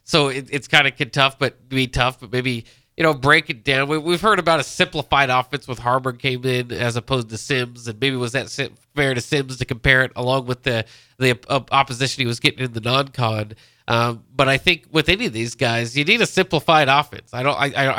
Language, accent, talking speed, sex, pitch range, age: English, American, 235 wpm, male, 125-145 Hz, 20-39